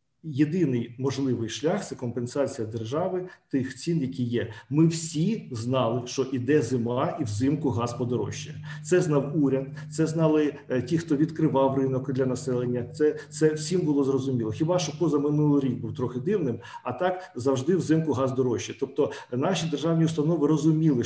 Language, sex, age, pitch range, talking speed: Ukrainian, male, 40-59, 130-150 Hz, 160 wpm